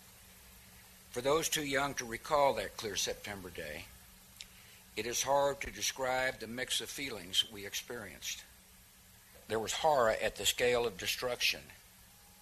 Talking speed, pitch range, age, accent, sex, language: 140 wpm, 105-140 Hz, 60-79, American, male, English